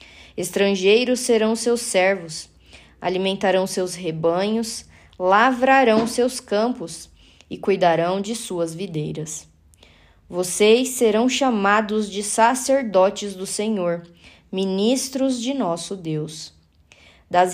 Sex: female